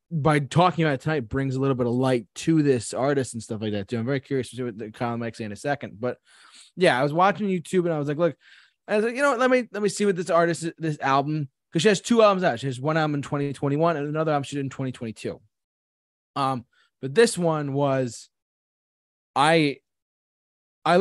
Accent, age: American, 20-39